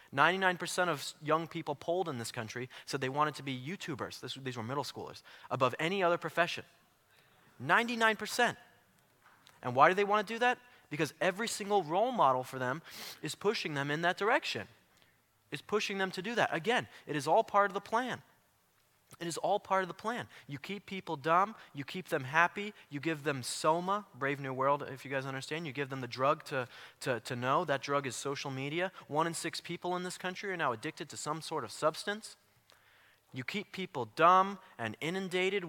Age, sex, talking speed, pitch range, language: 20-39, male, 200 wpm, 135-185 Hz, English